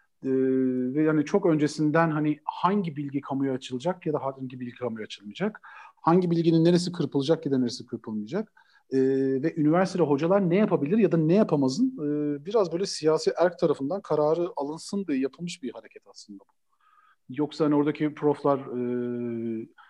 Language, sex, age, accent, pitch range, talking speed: Turkish, male, 40-59, native, 125-155 Hz, 160 wpm